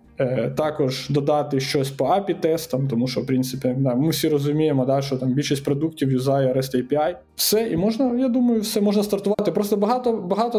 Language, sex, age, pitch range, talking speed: Ukrainian, male, 20-39, 140-200 Hz, 180 wpm